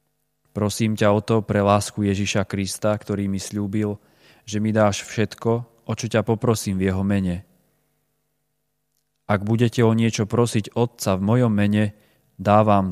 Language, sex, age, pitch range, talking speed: Slovak, male, 30-49, 100-120 Hz, 150 wpm